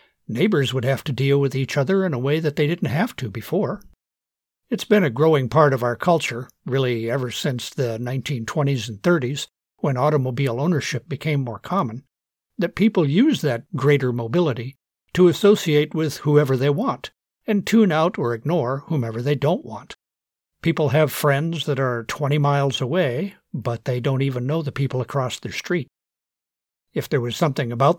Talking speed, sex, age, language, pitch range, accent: 175 wpm, male, 60-79, English, 130-165 Hz, American